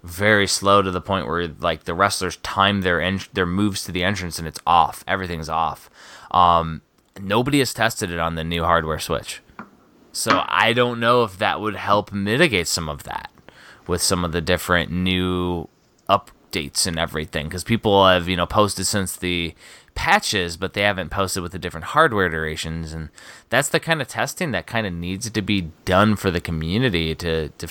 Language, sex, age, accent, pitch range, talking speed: English, male, 20-39, American, 90-110 Hz, 195 wpm